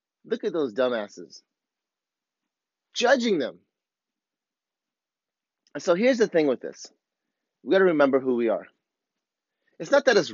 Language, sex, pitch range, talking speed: English, male, 140-190 Hz, 140 wpm